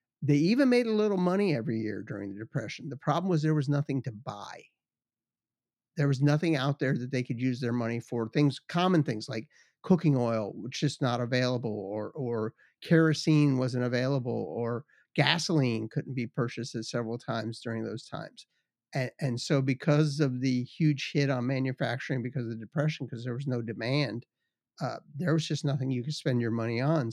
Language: English